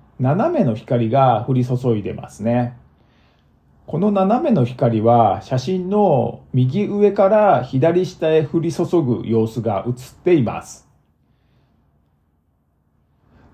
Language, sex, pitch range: Japanese, male, 115-185 Hz